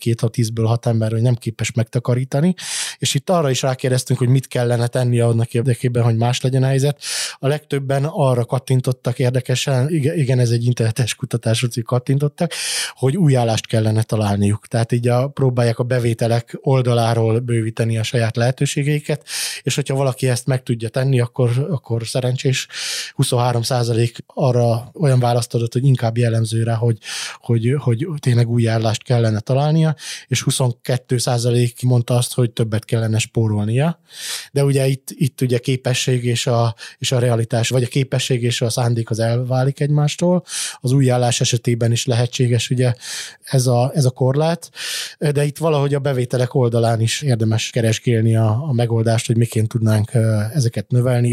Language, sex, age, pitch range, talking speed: Hungarian, male, 20-39, 115-135 Hz, 155 wpm